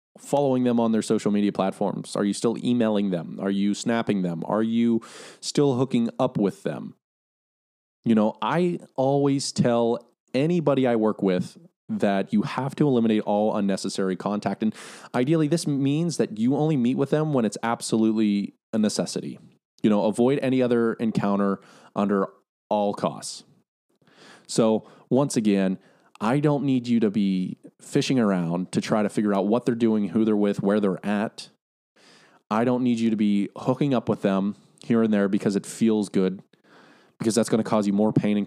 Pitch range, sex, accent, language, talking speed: 100-140 Hz, male, American, English, 180 wpm